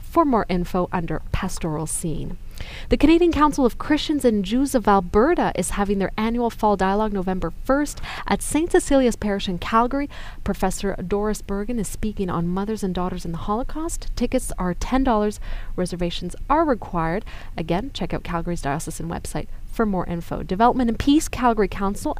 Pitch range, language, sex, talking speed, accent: 180-230 Hz, English, female, 165 wpm, American